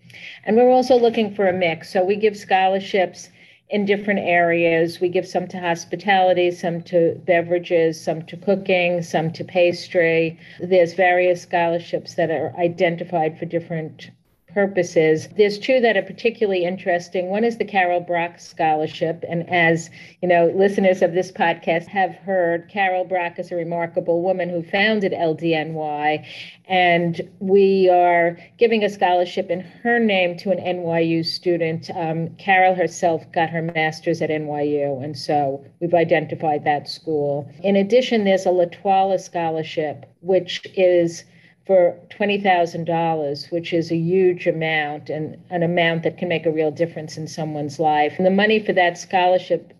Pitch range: 165-185 Hz